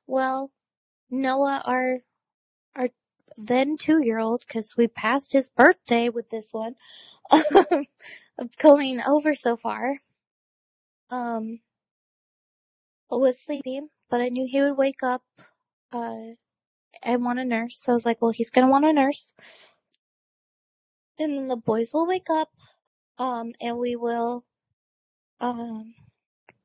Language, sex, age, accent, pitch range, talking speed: English, female, 20-39, American, 230-270 Hz, 130 wpm